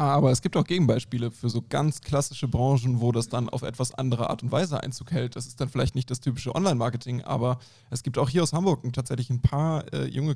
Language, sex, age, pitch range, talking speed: German, male, 20-39, 125-145 Hz, 240 wpm